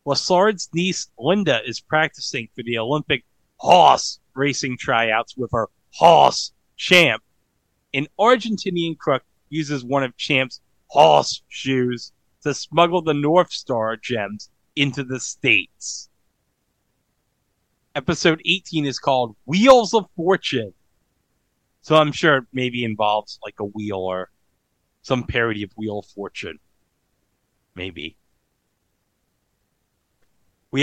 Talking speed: 115 wpm